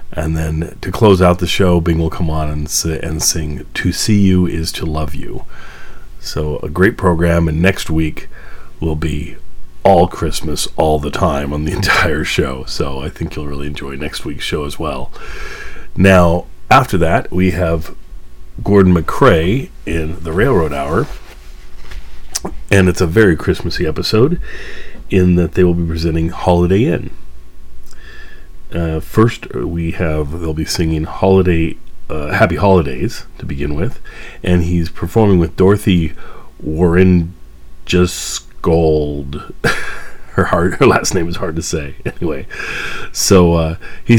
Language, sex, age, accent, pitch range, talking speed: English, male, 40-59, American, 70-90 Hz, 150 wpm